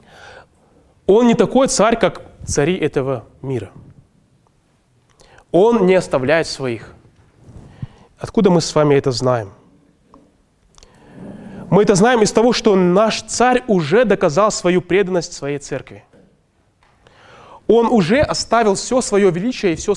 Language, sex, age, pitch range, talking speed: Russian, male, 20-39, 160-220 Hz, 120 wpm